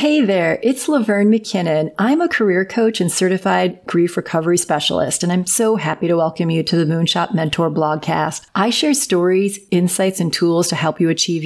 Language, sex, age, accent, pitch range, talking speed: English, female, 40-59, American, 170-205 Hz, 190 wpm